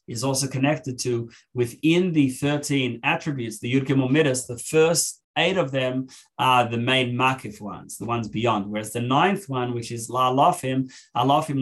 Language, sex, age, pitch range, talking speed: English, male, 20-39, 115-135 Hz, 165 wpm